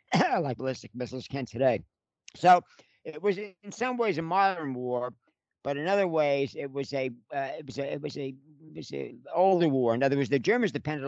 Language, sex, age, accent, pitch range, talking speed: English, male, 60-79, American, 120-150 Hz, 160 wpm